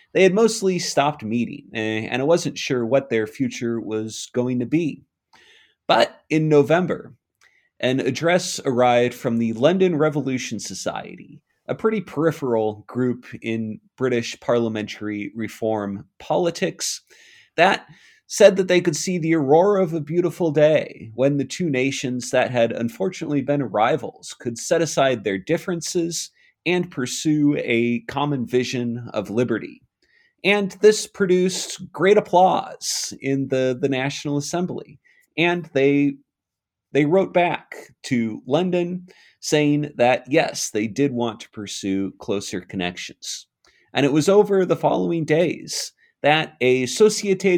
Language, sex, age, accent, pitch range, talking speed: English, male, 30-49, American, 115-175 Hz, 135 wpm